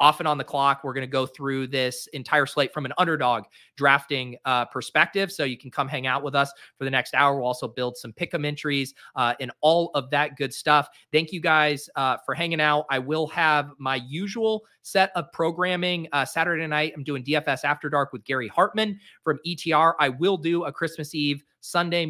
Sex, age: male, 30-49